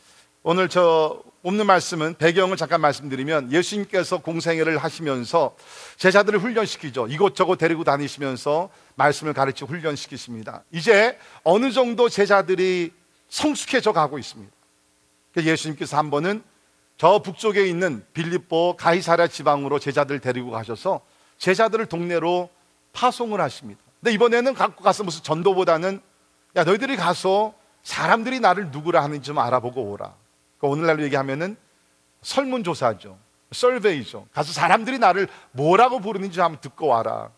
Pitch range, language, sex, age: 130-185 Hz, Korean, male, 40-59